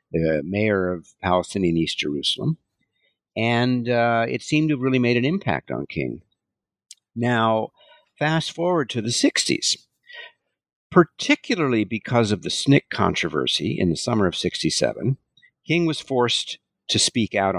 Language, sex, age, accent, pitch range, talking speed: English, male, 60-79, American, 100-145 Hz, 140 wpm